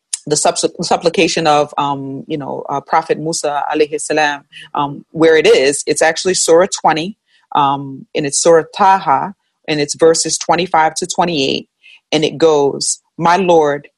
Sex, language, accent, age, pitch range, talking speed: female, English, American, 30-49, 150-175 Hz, 155 wpm